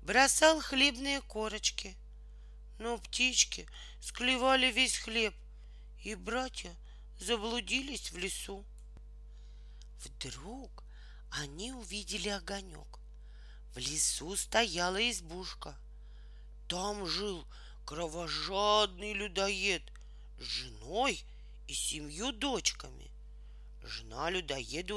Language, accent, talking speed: Russian, native, 75 wpm